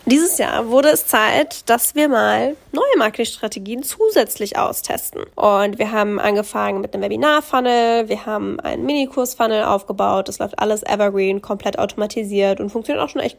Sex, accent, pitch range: female, German, 210-245 Hz